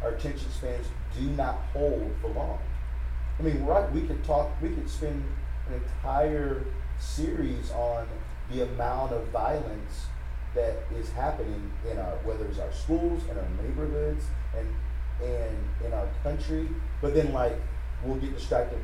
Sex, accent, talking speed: male, American, 150 wpm